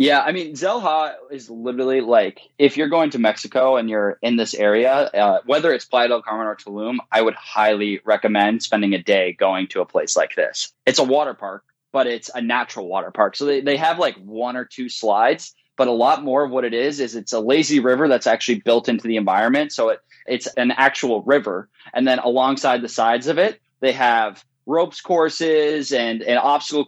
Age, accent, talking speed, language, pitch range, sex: 20-39, American, 215 wpm, English, 115-145 Hz, male